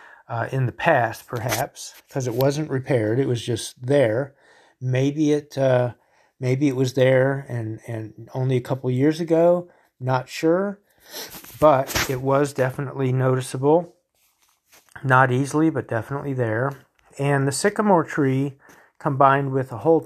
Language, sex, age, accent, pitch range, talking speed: English, male, 40-59, American, 125-150 Hz, 145 wpm